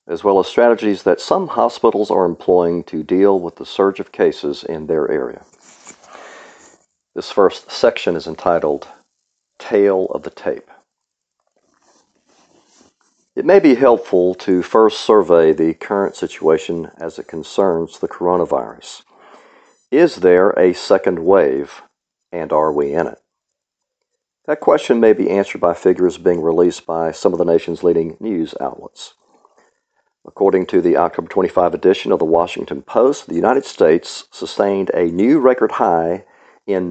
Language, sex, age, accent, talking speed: English, male, 50-69, American, 145 wpm